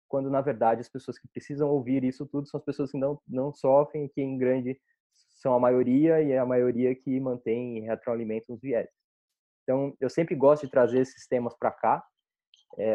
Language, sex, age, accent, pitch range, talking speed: Portuguese, male, 20-39, Brazilian, 115-145 Hz, 205 wpm